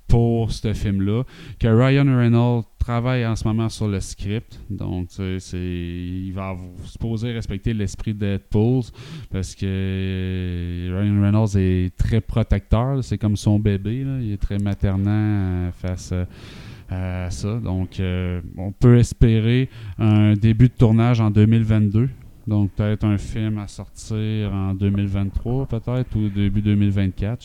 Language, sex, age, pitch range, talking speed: French, male, 20-39, 100-120 Hz, 135 wpm